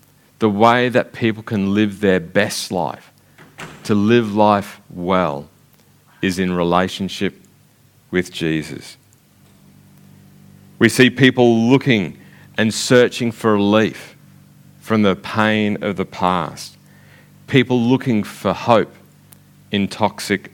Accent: Australian